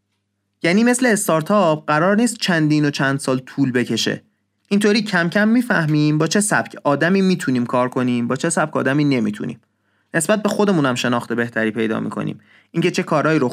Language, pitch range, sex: Persian, 125-195 Hz, male